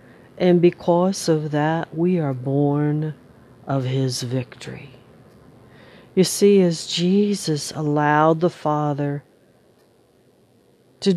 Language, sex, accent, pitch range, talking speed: English, female, American, 135-170 Hz, 95 wpm